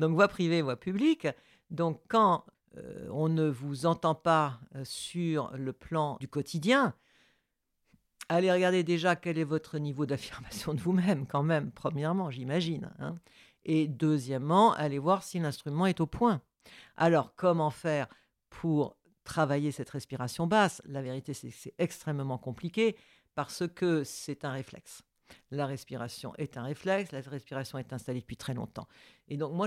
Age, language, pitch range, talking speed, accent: 50-69, French, 150-185 Hz, 155 wpm, French